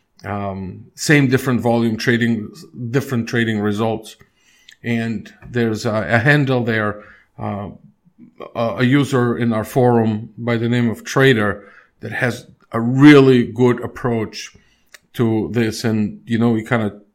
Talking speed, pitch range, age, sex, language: 140 wpm, 110-130 Hz, 50-69, male, English